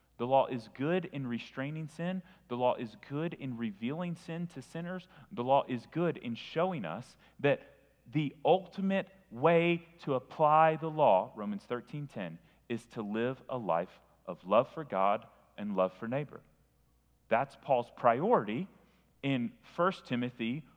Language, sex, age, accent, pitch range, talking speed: English, male, 30-49, American, 110-165 Hz, 155 wpm